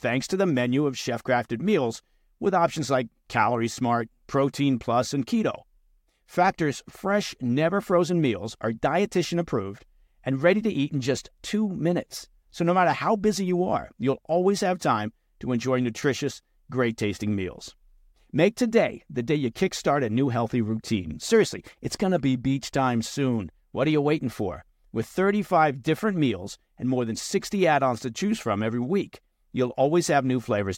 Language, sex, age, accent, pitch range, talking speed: English, male, 50-69, American, 120-180 Hz, 180 wpm